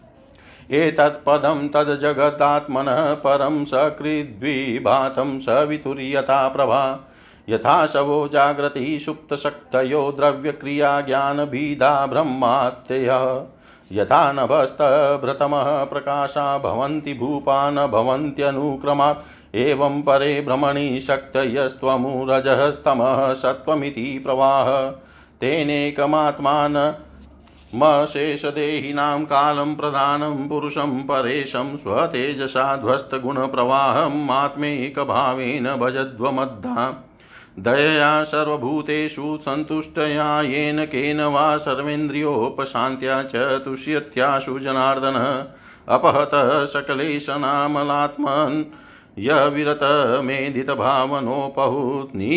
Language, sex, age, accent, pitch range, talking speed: Hindi, male, 50-69, native, 135-145 Hz, 40 wpm